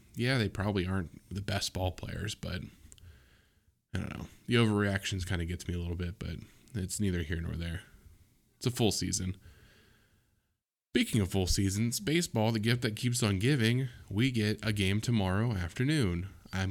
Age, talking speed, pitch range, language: 20-39, 170 wpm, 90-105 Hz, English